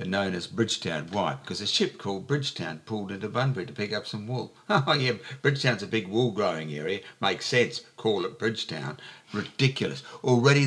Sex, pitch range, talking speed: male, 90-115 Hz, 180 wpm